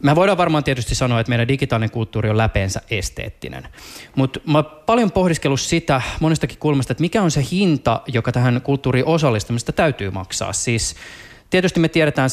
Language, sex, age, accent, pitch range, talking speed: Finnish, male, 20-39, native, 120-145 Hz, 165 wpm